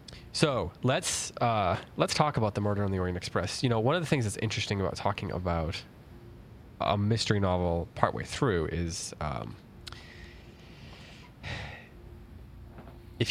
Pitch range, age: 95-115 Hz, 20-39